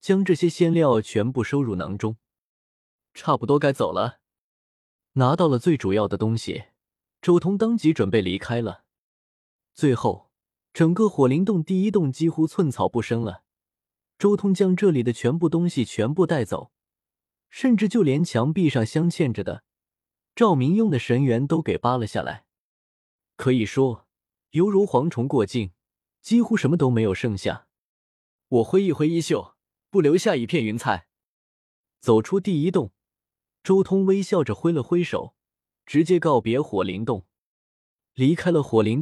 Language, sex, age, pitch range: Chinese, male, 20-39, 110-170 Hz